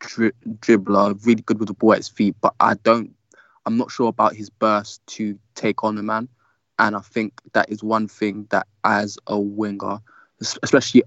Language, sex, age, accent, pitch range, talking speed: English, male, 20-39, British, 105-120 Hz, 195 wpm